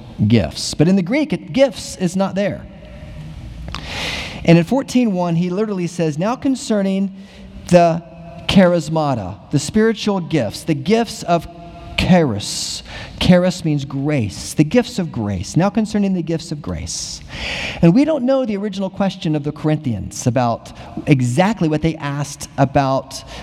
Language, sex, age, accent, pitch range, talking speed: English, male, 40-59, American, 125-180 Hz, 145 wpm